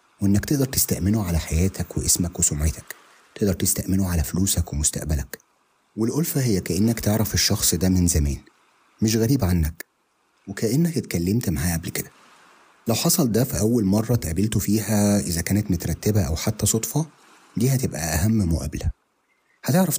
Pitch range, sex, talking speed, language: 90-120 Hz, male, 140 wpm, Arabic